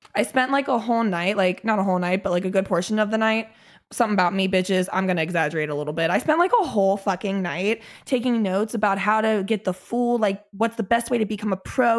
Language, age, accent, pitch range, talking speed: English, 20-39, American, 190-240 Hz, 270 wpm